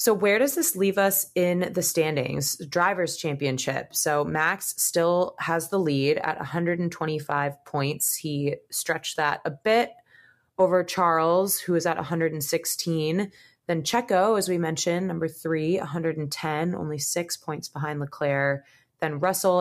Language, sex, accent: English, female, American